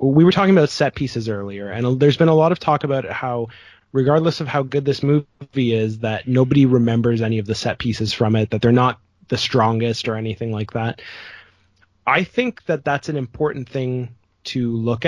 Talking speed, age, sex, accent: 205 wpm, 20-39, male, American